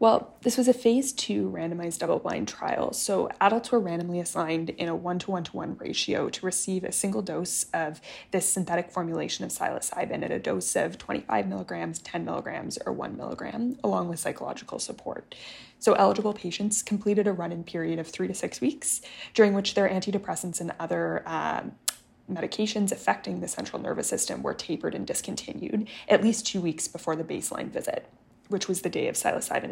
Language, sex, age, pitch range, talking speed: English, female, 20-39, 175-210 Hz, 175 wpm